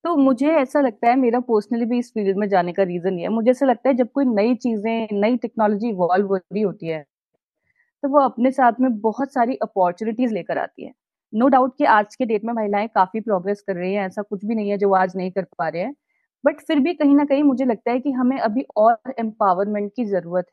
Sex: female